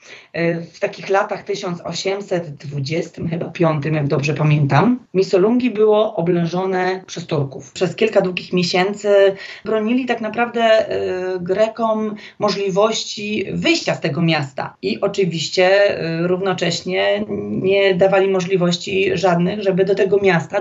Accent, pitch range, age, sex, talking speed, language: native, 170-205 Hz, 30-49, female, 115 wpm, Polish